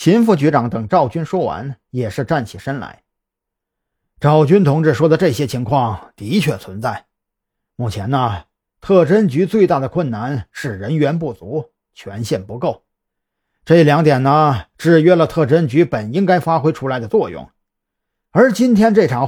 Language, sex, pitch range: Chinese, male, 110-180 Hz